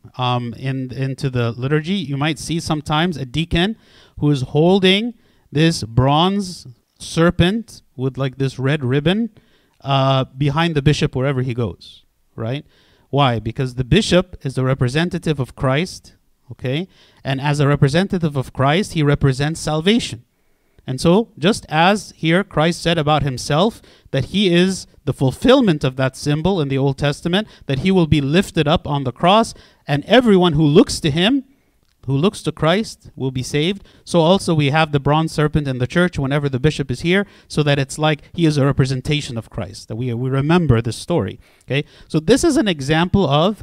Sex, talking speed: male, 180 wpm